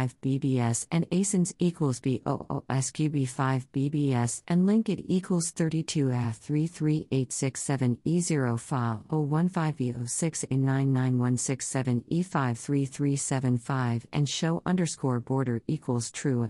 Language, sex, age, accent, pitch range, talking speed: English, female, 50-69, American, 125-165 Hz, 100 wpm